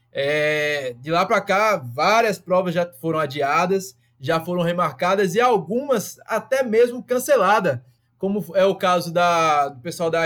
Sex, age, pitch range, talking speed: male, 20-39, 160-225 Hz, 150 wpm